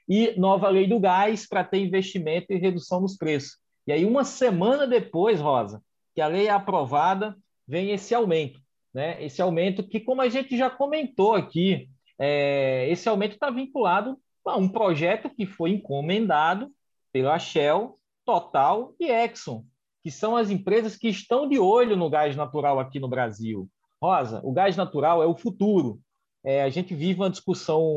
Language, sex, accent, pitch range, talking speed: Portuguese, male, Brazilian, 160-215 Hz, 165 wpm